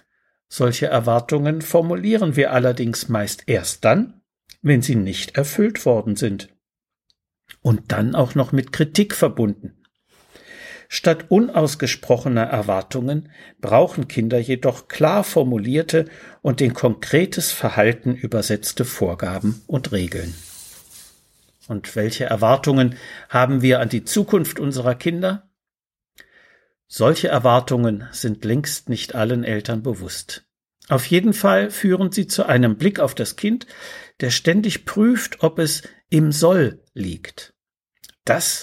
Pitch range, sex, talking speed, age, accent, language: 115-165 Hz, male, 115 wpm, 60-79, German, German